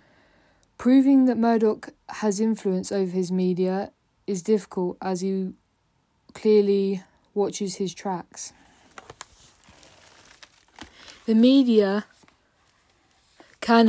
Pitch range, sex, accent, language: 195-220 Hz, female, British, English